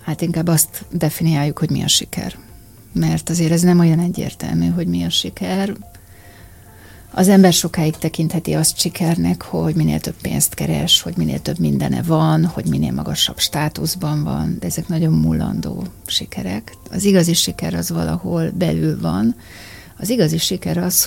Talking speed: 155 wpm